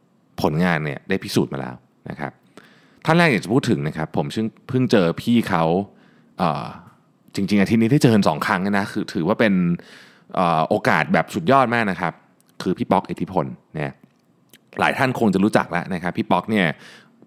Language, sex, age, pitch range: Thai, male, 20-39, 85-120 Hz